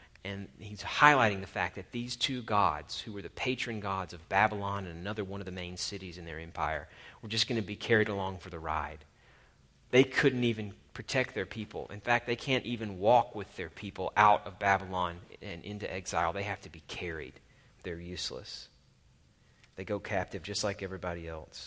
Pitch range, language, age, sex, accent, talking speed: 90-110 Hz, English, 40-59, male, American, 195 wpm